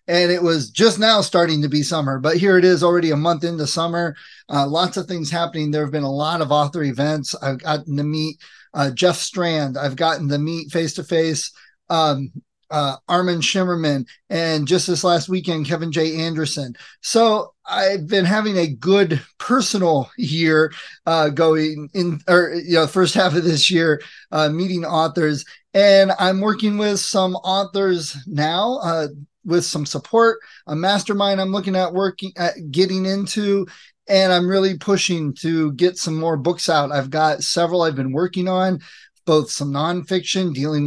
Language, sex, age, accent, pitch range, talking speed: English, male, 30-49, American, 155-185 Hz, 175 wpm